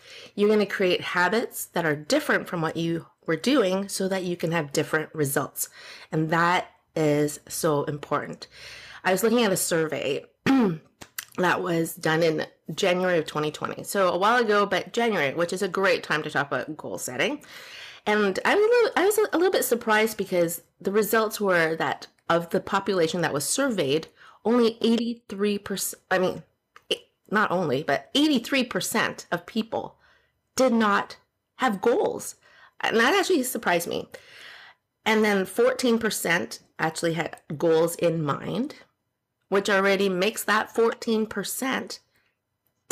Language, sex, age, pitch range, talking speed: English, female, 30-49, 165-235 Hz, 145 wpm